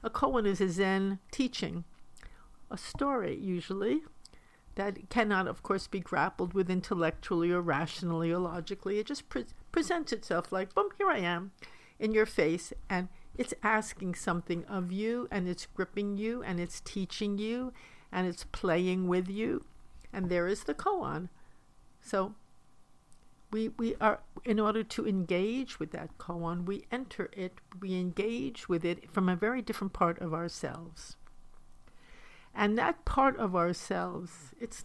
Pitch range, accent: 170-215 Hz, American